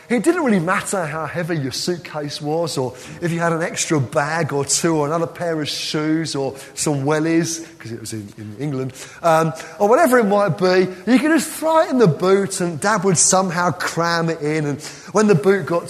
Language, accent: English, British